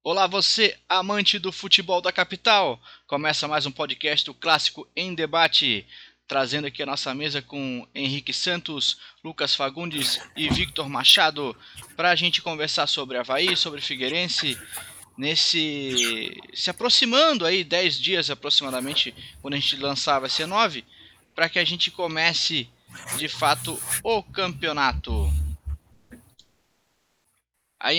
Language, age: Portuguese, 20-39